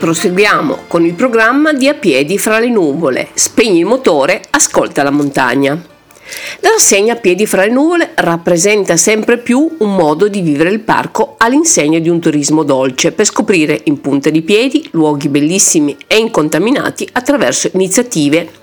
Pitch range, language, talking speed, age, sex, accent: 160-240 Hz, Italian, 160 wpm, 50-69, female, native